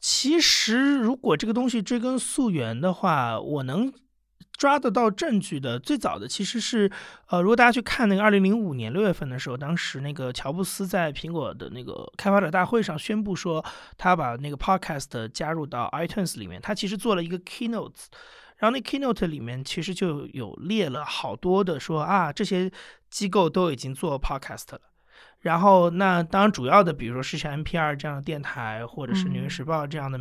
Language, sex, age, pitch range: Chinese, male, 30-49, 150-210 Hz